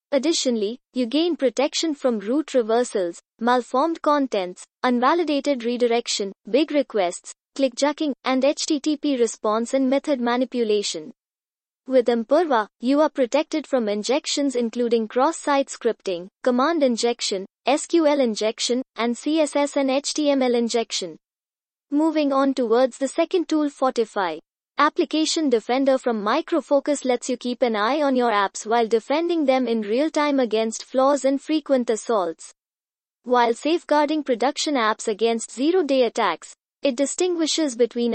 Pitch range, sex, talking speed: 235-290 Hz, female, 125 wpm